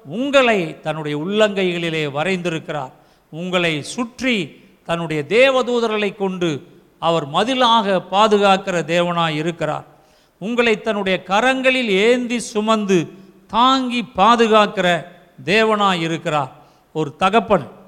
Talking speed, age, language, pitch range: 85 wpm, 50-69, Tamil, 170-220 Hz